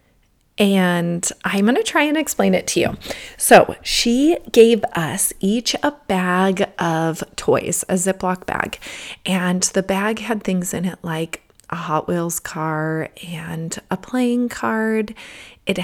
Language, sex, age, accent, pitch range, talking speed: English, female, 30-49, American, 170-205 Hz, 150 wpm